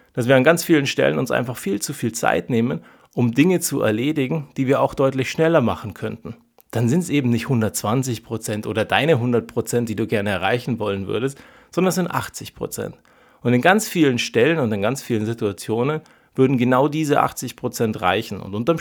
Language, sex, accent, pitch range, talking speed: German, male, German, 115-160 Hz, 195 wpm